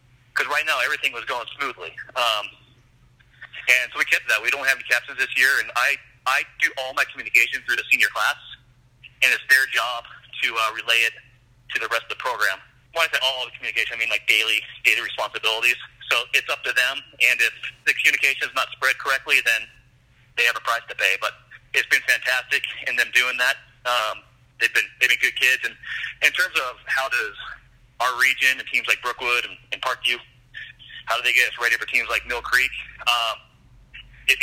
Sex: male